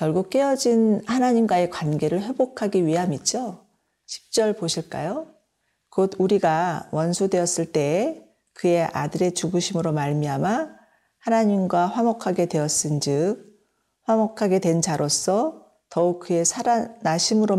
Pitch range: 165-220 Hz